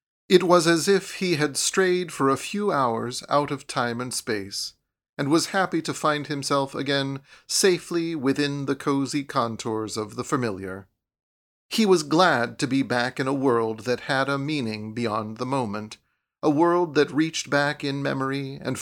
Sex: male